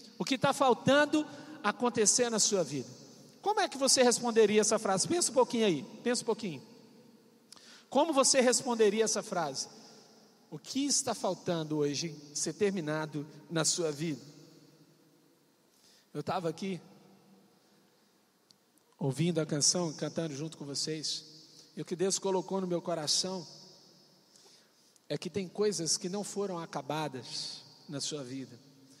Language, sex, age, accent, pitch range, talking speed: Portuguese, male, 50-69, Brazilian, 155-225 Hz, 135 wpm